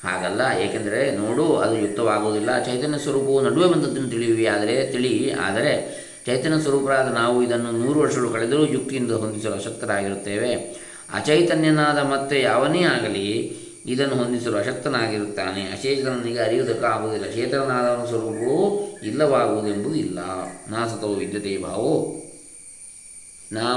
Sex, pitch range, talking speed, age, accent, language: male, 110-155 Hz, 95 wpm, 20-39, native, Kannada